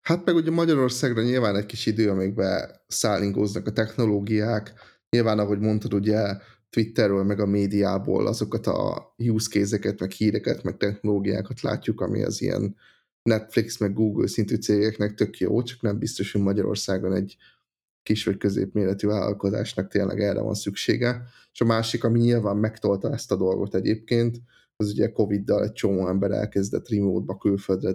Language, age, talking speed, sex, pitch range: Hungarian, 10-29, 150 wpm, male, 100-115 Hz